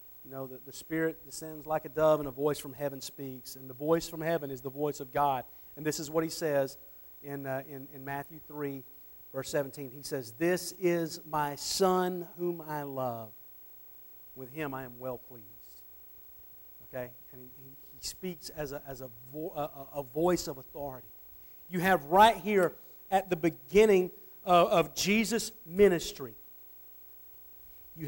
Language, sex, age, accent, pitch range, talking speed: English, male, 50-69, American, 125-165 Hz, 175 wpm